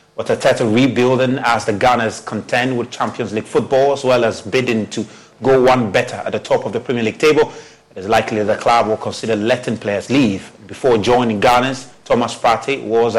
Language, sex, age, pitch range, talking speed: English, male, 30-49, 110-130 Hz, 195 wpm